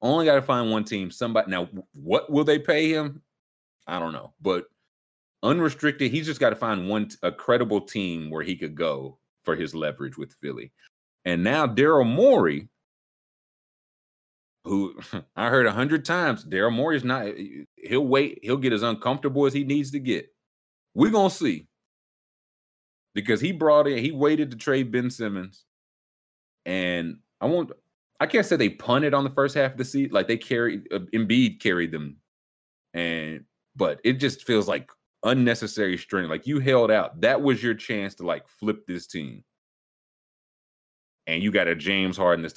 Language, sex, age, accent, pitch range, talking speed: English, male, 30-49, American, 95-140 Hz, 175 wpm